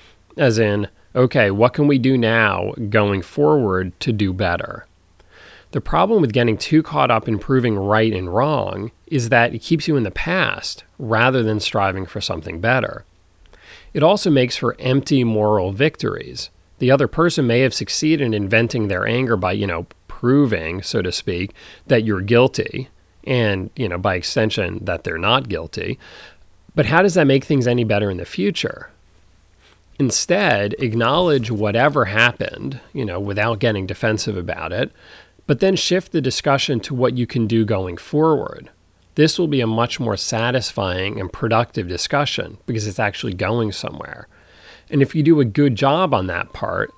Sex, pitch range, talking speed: male, 100-135 Hz, 170 wpm